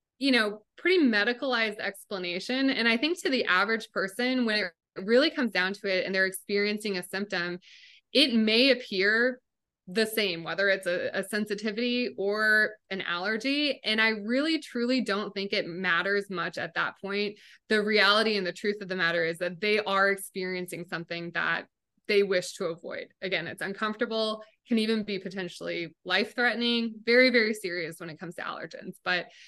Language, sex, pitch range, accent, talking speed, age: English, female, 185-225 Hz, American, 175 wpm, 20-39